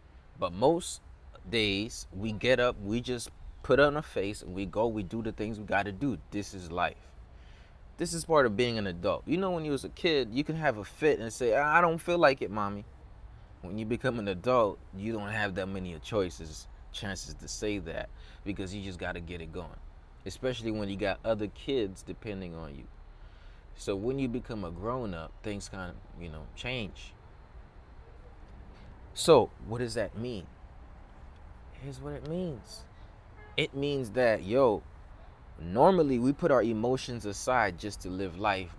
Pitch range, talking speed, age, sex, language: 85-115 Hz, 185 wpm, 20-39, male, English